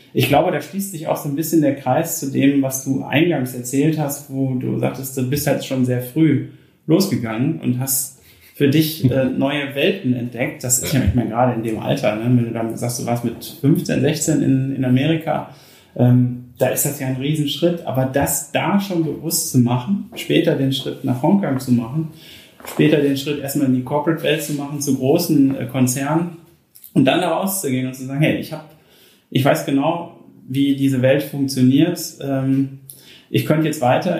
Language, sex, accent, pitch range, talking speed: German, male, German, 125-150 Hz, 190 wpm